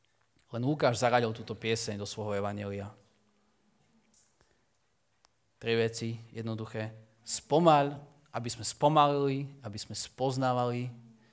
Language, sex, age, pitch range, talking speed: Slovak, male, 30-49, 115-145 Hz, 95 wpm